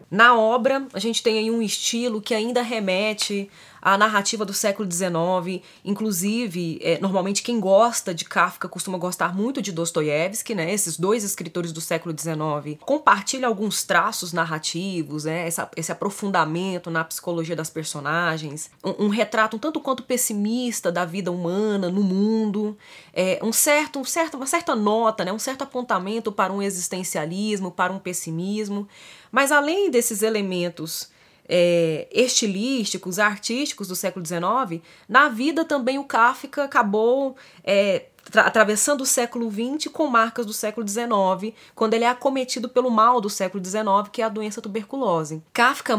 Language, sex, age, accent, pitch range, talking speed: Portuguese, female, 20-39, Brazilian, 180-235 Hz, 150 wpm